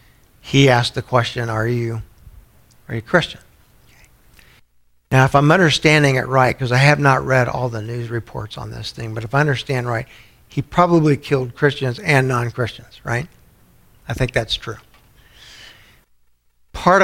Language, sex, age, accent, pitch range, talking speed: English, male, 60-79, American, 115-135 Hz, 160 wpm